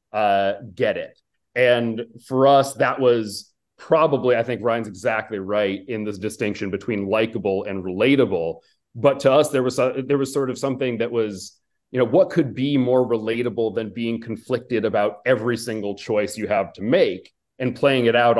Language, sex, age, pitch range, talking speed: English, male, 30-49, 105-130 Hz, 185 wpm